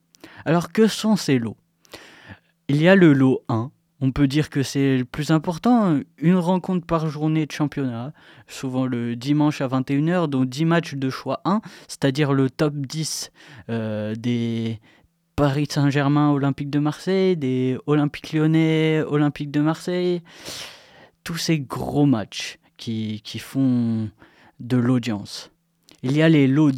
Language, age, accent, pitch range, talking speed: French, 20-39, French, 130-165 Hz, 150 wpm